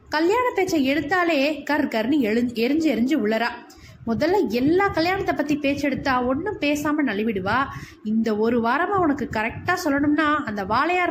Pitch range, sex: 225-300 Hz, female